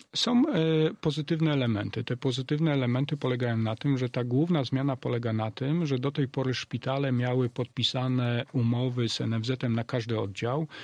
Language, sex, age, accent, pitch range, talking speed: Polish, male, 40-59, native, 115-135 Hz, 160 wpm